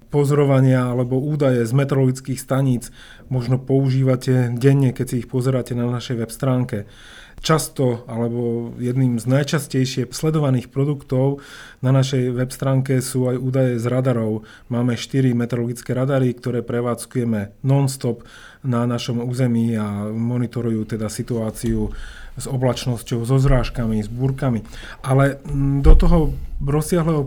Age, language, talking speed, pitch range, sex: 30-49, Slovak, 125 wpm, 120-135 Hz, male